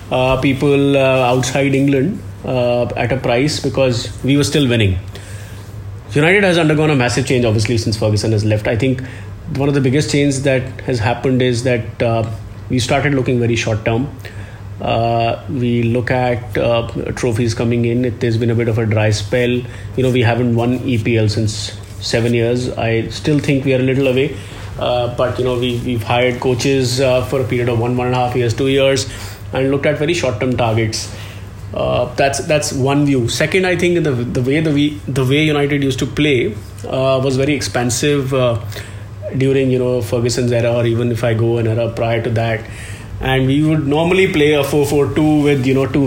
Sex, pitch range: male, 115-135 Hz